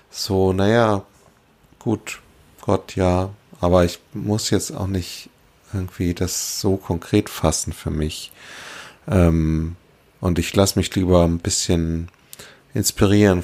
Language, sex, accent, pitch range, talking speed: German, male, German, 85-105 Hz, 120 wpm